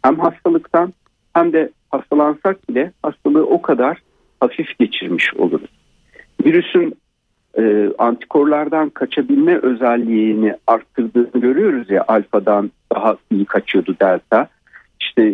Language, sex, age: Turkish, male, 50-69